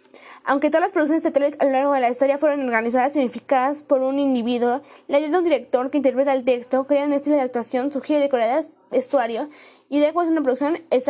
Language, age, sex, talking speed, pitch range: Spanish, 20-39, female, 215 wpm, 250-300 Hz